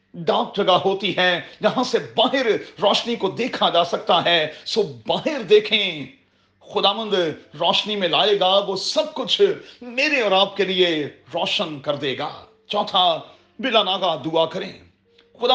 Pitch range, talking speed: 170-215 Hz, 155 wpm